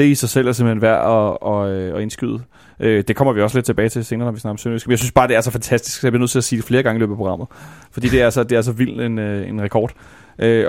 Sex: male